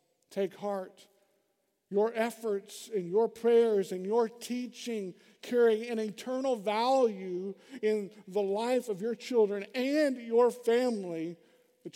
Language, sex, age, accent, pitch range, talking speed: English, male, 50-69, American, 180-230 Hz, 120 wpm